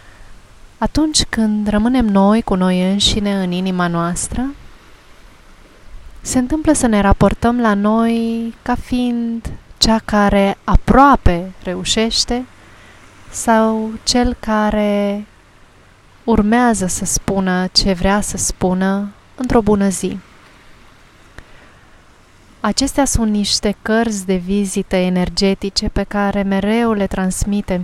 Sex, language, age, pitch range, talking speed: female, Romanian, 30-49, 180-220 Hz, 105 wpm